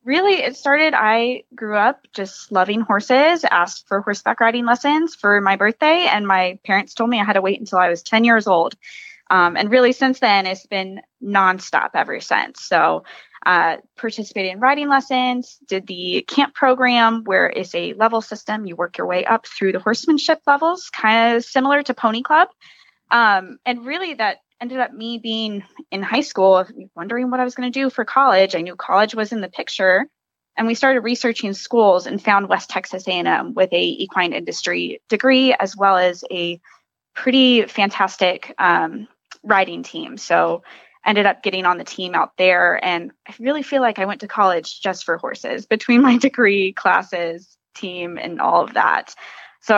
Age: 20-39